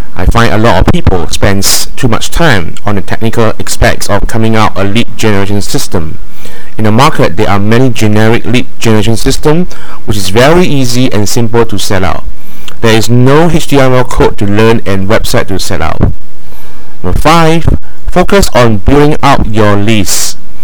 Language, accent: English, Malaysian